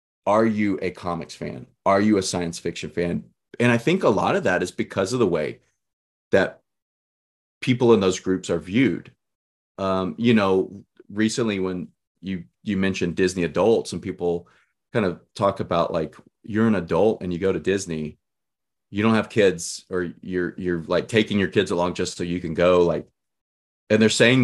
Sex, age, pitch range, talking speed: male, 30-49, 90-110 Hz, 185 wpm